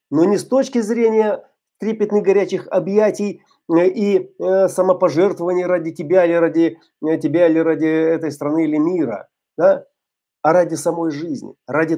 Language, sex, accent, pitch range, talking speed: Russian, male, native, 150-195 Hz, 135 wpm